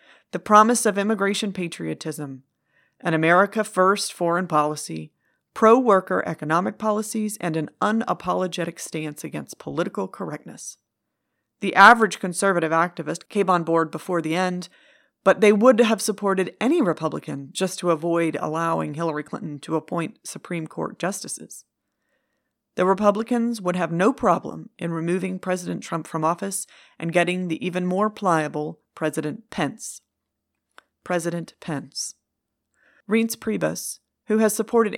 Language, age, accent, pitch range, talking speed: English, 40-59, American, 165-210 Hz, 130 wpm